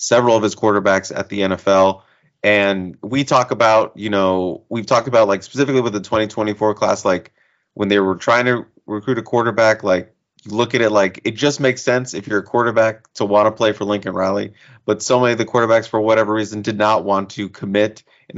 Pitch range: 100-115 Hz